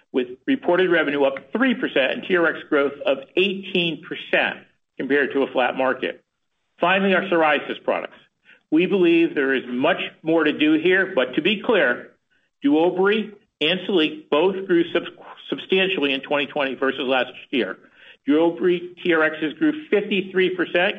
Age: 60-79